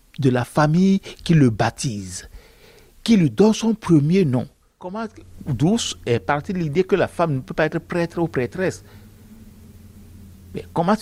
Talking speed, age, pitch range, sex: 165 wpm, 60-79, 115-185 Hz, male